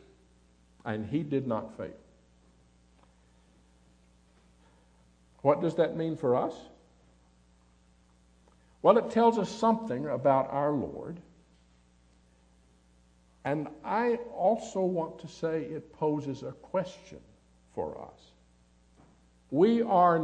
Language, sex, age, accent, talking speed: English, male, 60-79, American, 100 wpm